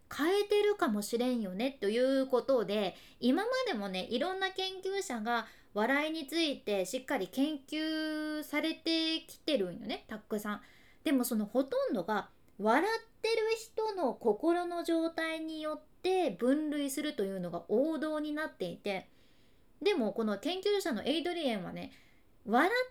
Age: 20-39